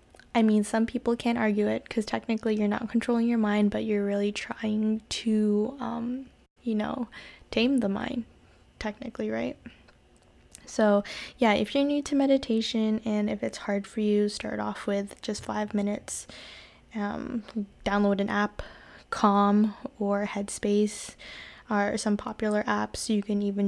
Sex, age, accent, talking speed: female, 10-29, American, 150 wpm